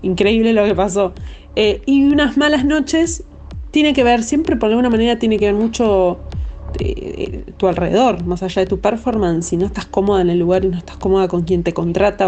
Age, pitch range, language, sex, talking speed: 20-39, 180-210 Hz, Spanish, female, 215 wpm